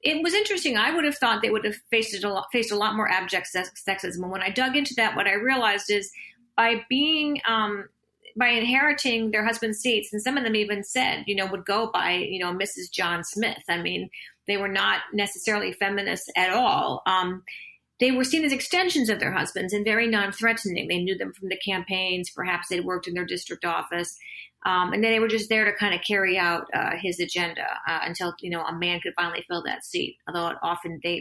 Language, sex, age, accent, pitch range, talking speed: English, female, 40-59, American, 190-230 Hz, 225 wpm